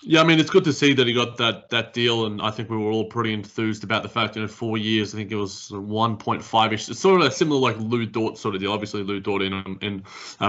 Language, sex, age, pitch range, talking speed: English, male, 20-39, 110-125 Hz, 305 wpm